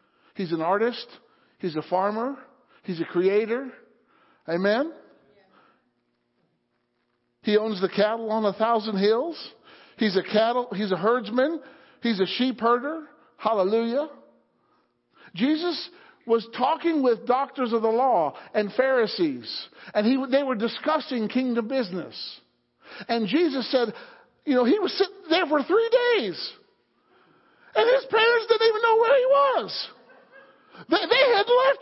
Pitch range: 235-365 Hz